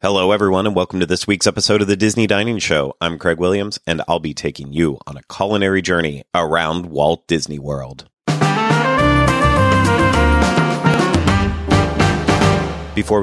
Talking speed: 135 wpm